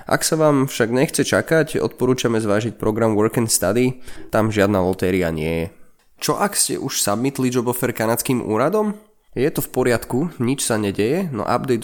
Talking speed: 170 wpm